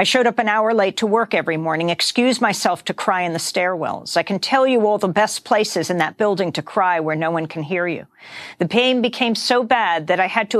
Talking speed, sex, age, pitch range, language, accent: 255 wpm, female, 50-69, 185-225 Hz, English, American